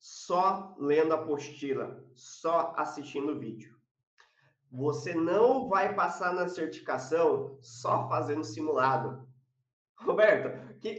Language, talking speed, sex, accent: Portuguese, 105 wpm, male, Brazilian